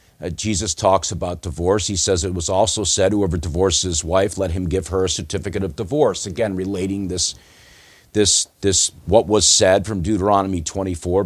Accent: American